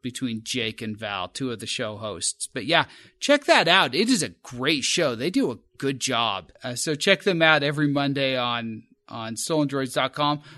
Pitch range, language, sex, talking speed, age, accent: 130-210 Hz, English, male, 195 wpm, 30-49, American